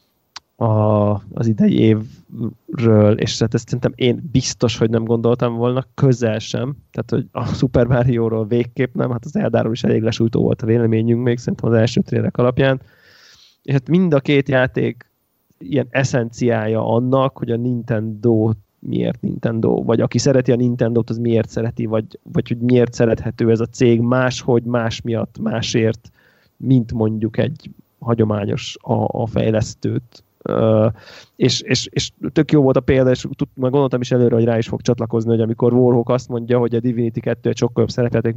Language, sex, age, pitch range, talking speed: Hungarian, male, 20-39, 115-130 Hz, 175 wpm